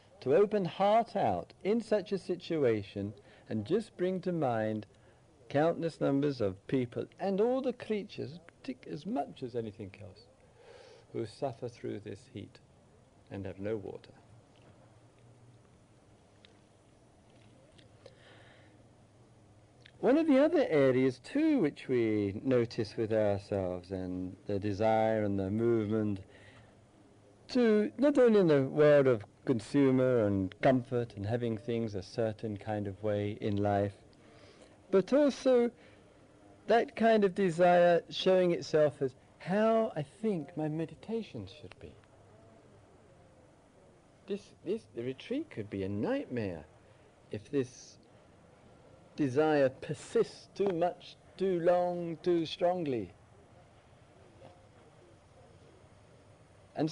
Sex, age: male, 50-69